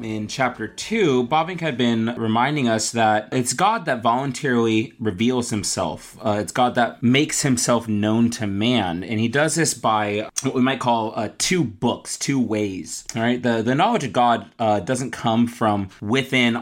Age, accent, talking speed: 20-39, American, 185 wpm